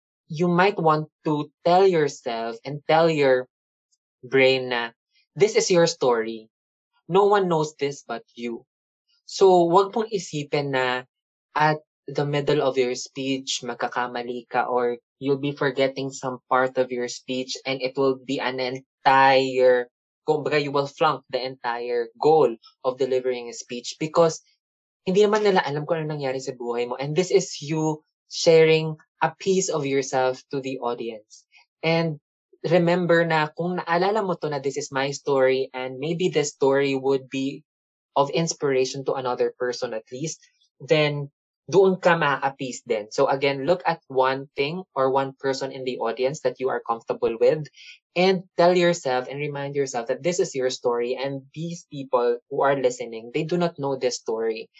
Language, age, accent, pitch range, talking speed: English, 20-39, Filipino, 130-165 Hz, 165 wpm